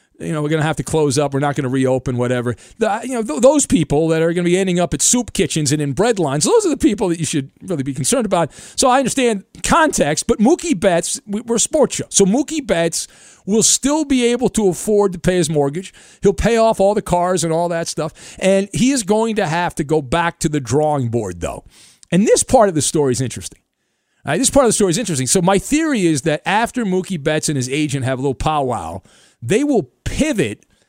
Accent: American